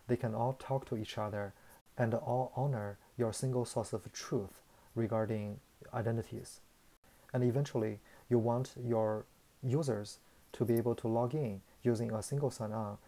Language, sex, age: Chinese, male, 30-49